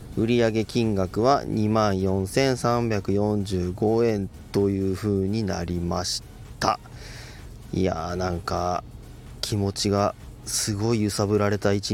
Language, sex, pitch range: Japanese, male, 95-120 Hz